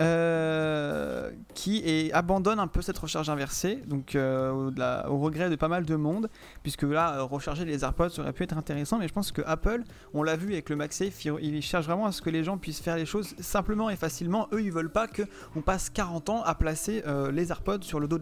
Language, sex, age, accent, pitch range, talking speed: French, male, 30-49, French, 150-185 Hz, 245 wpm